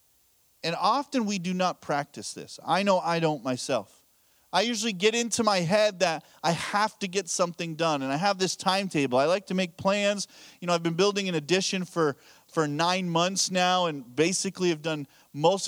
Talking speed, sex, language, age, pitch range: 200 wpm, male, English, 30-49, 160-220 Hz